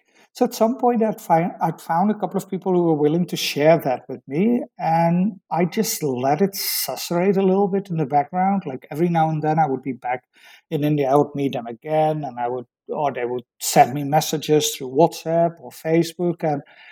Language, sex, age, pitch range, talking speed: English, male, 60-79, 135-170 Hz, 220 wpm